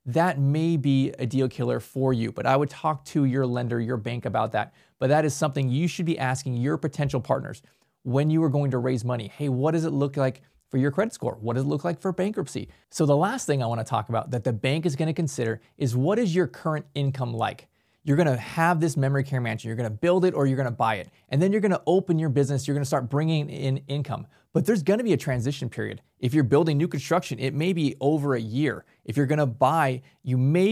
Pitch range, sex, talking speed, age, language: 130-160 Hz, male, 265 wpm, 20-39, English